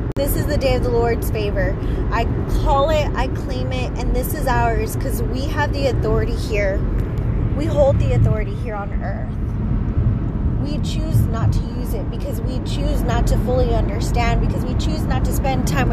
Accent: American